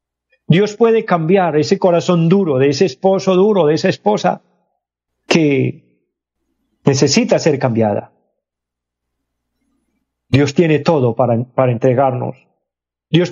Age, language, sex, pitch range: 40-59, Spanish, male, 120-175 Hz